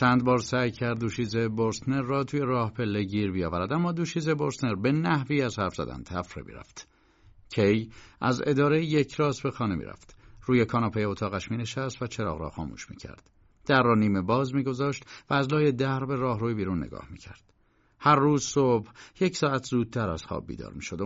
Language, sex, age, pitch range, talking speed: Persian, male, 50-69, 105-150 Hz, 175 wpm